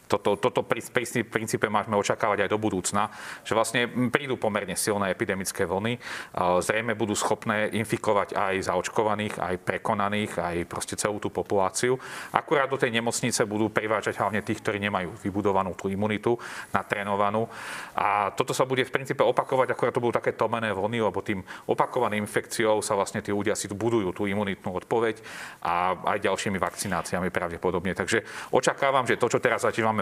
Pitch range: 100-110 Hz